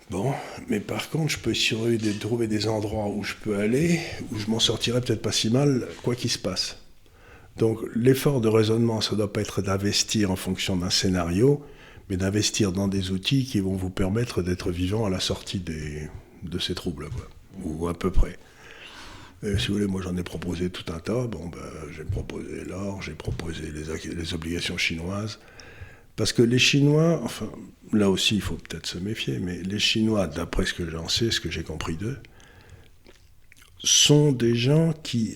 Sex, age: male, 50-69